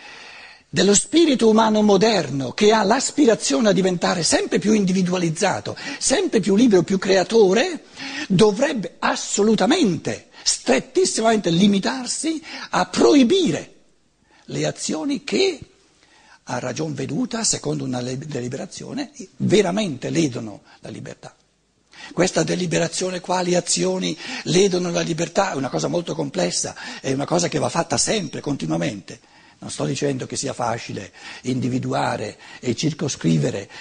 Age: 60-79